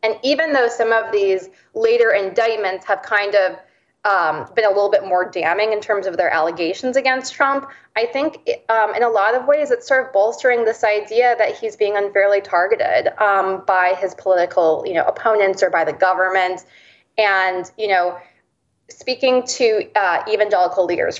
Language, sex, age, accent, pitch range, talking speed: English, female, 20-39, American, 190-250 Hz, 180 wpm